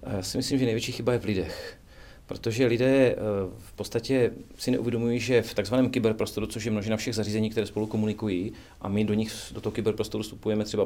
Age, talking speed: 40-59, 200 wpm